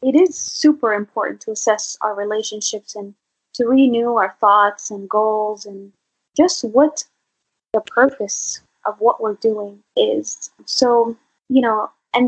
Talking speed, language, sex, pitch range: 140 wpm, English, female, 215-260 Hz